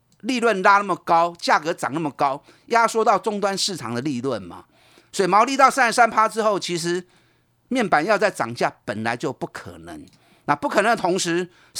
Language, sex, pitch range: Chinese, male, 155-230 Hz